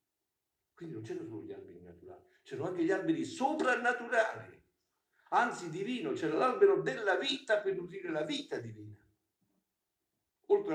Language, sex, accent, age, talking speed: Italian, male, native, 50-69, 135 wpm